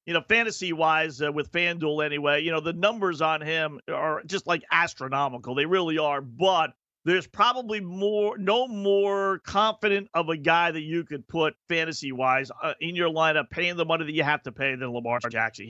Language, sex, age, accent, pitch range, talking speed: English, male, 50-69, American, 140-170 Hz, 190 wpm